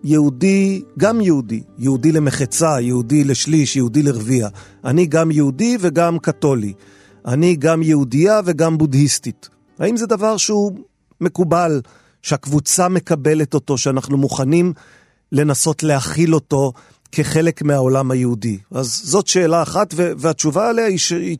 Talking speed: 125 wpm